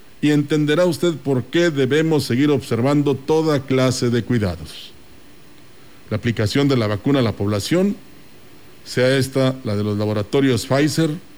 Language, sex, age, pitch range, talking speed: Spanish, male, 50-69, 115-150 Hz, 140 wpm